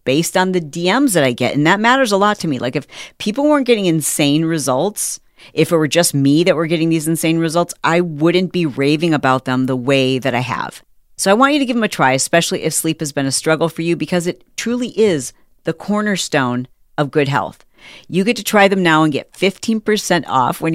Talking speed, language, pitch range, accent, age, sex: 235 wpm, English, 150-185 Hz, American, 40-59, female